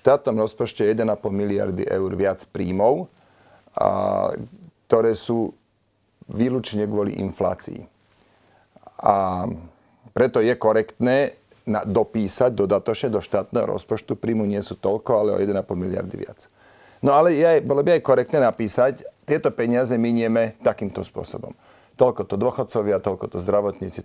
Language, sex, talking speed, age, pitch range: Slovak, male, 125 wpm, 40-59, 105-125 Hz